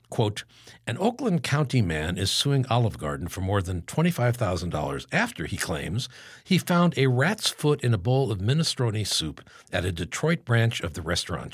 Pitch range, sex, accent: 95-140 Hz, male, American